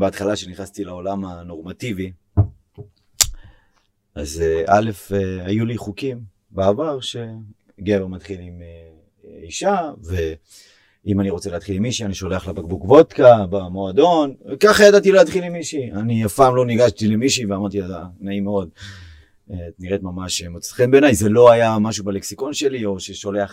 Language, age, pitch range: Hebrew, 30-49, 100-110 Hz